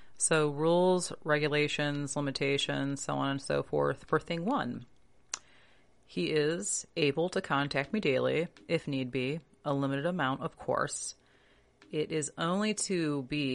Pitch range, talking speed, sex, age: 135-170 Hz, 140 wpm, female, 30-49